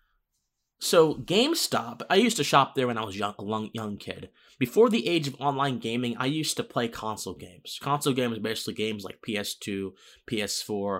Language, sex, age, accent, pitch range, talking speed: English, male, 20-39, American, 110-140 Hz, 190 wpm